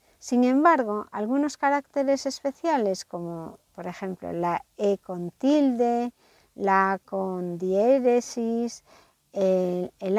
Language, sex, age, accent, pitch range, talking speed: Spanish, female, 60-79, American, 195-275 Hz, 100 wpm